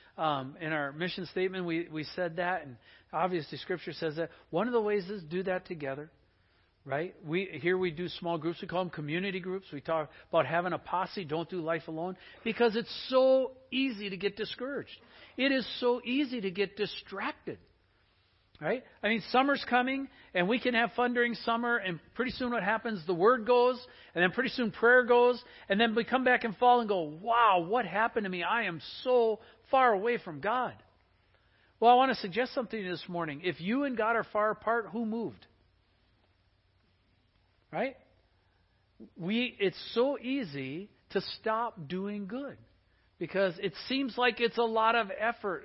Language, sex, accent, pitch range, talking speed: English, male, American, 145-230 Hz, 185 wpm